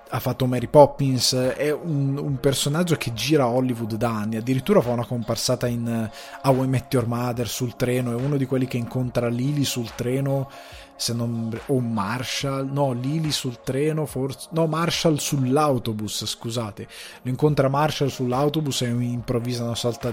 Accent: native